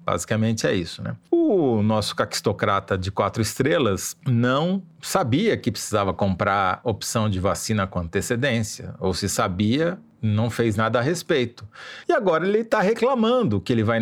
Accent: Brazilian